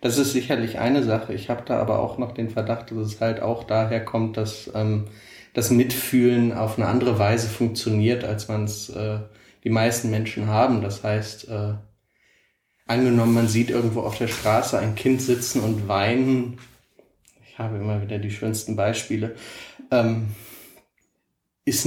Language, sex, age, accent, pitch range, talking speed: German, male, 30-49, German, 110-125 Hz, 165 wpm